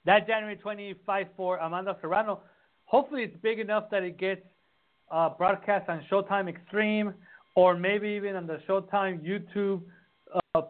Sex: male